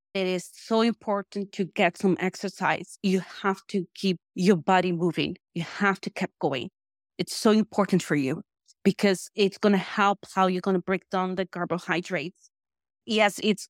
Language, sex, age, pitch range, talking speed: English, female, 30-49, 185-220 Hz, 175 wpm